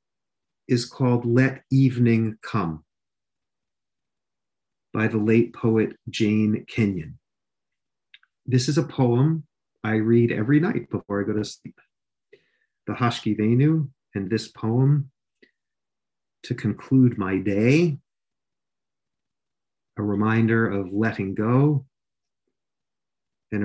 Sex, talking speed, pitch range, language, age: male, 100 wpm, 105-130 Hz, English, 40-59